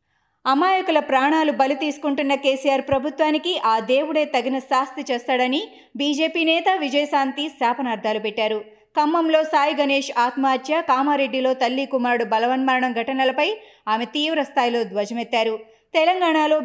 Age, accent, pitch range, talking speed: 20-39, native, 245-310 Hz, 105 wpm